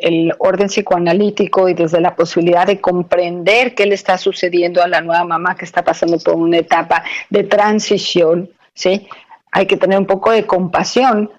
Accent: Mexican